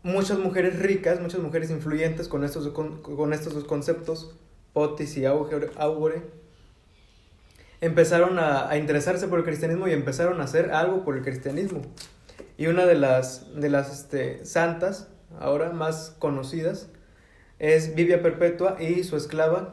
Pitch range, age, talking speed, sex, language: 140-170 Hz, 20-39, 150 wpm, male, Spanish